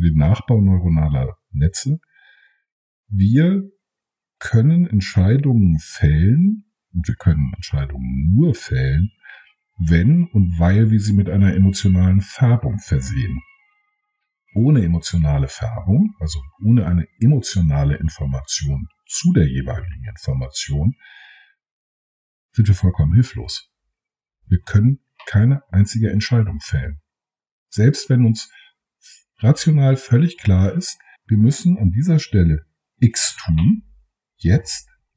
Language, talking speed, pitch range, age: German, 105 wpm, 90-135 Hz, 50-69